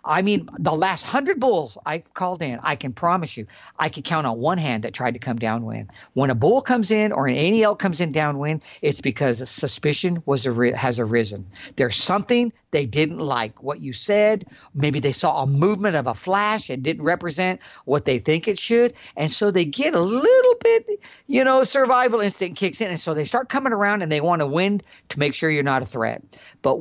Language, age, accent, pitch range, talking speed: English, 50-69, American, 135-200 Hz, 220 wpm